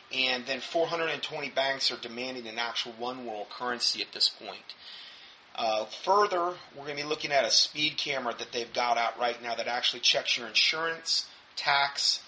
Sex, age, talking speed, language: male, 30-49, 180 wpm, English